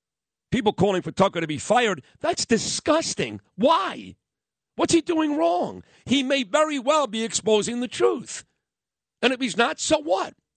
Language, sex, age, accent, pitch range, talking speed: English, male, 50-69, American, 170-265 Hz, 160 wpm